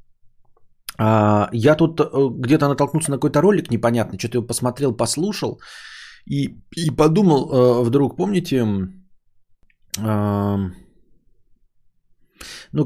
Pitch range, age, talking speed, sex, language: 105-125 Hz, 20-39, 85 wpm, male, Bulgarian